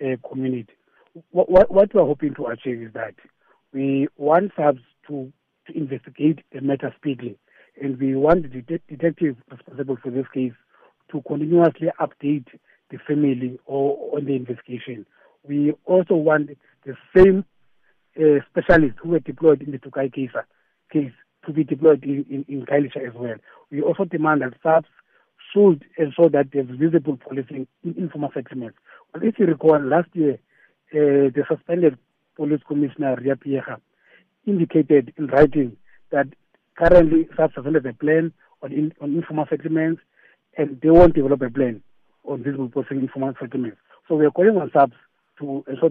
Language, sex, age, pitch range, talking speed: English, male, 60-79, 135-160 Hz, 165 wpm